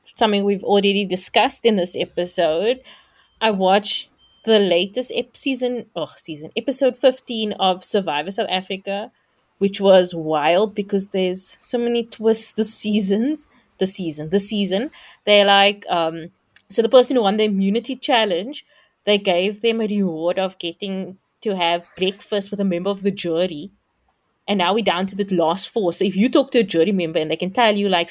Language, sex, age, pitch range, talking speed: English, female, 20-39, 185-235 Hz, 180 wpm